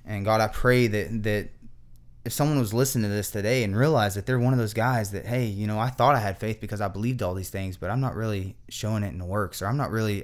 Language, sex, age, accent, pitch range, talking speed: English, male, 20-39, American, 95-120 Hz, 285 wpm